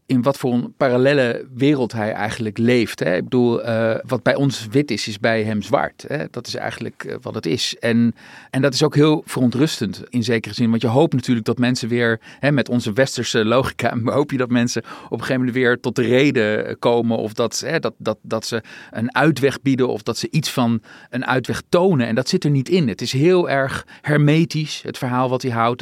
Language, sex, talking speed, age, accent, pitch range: Dutch, male, 210 wpm, 40-59, Dutch, 120-145 Hz